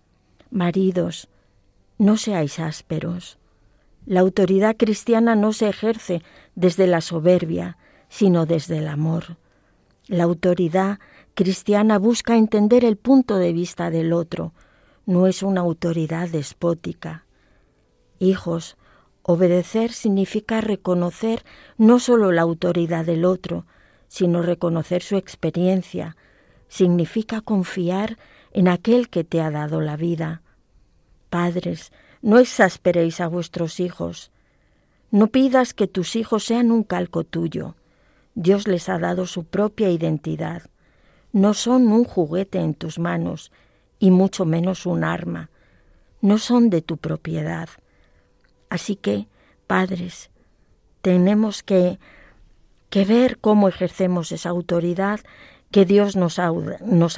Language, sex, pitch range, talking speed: Spanish, female, 165-205 Hz, 120 wpm